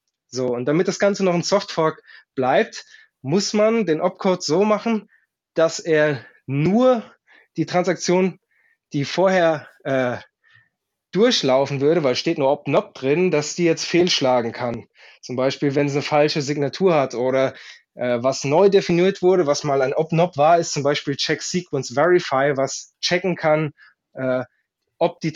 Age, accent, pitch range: 20-39, German, 145-190 Hz